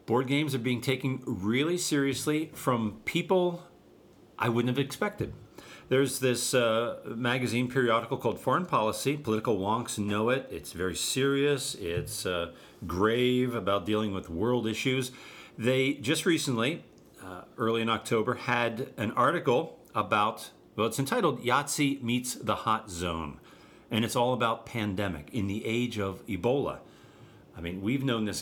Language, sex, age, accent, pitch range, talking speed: English, male, 50-69, American, 100-130 Hz, 150 wpm